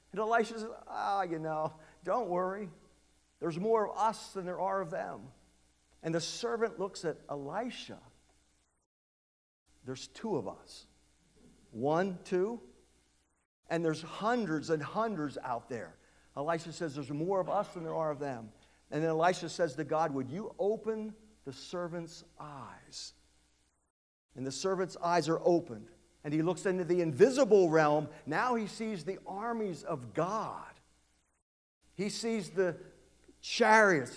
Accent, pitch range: American, 120-185 Hz